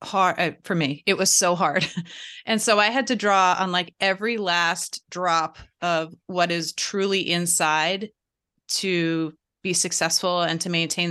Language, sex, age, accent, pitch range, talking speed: English, female, 30-49, American, 170-200 Hz, 160 wpm